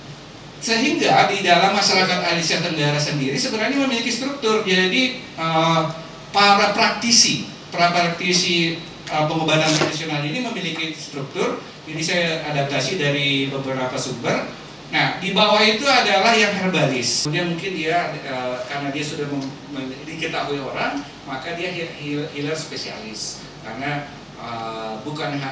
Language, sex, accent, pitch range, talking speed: Indonesian, male, native, 145-195 Hz, 110 wpm